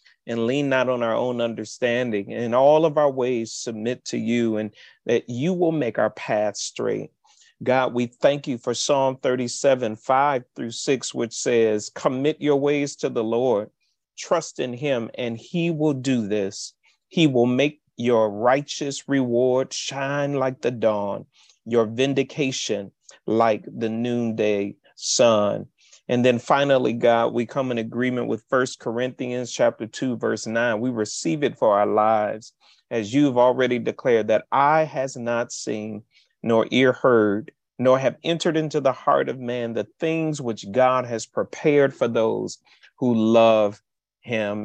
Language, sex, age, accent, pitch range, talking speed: English, male, 40-59, American, 115-135 Hz, 155 wpm